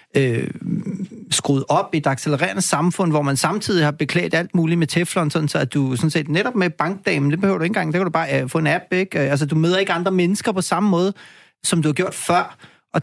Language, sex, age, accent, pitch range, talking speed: Danish, male, 30-49, native, 140-180 Hz, 250 wpm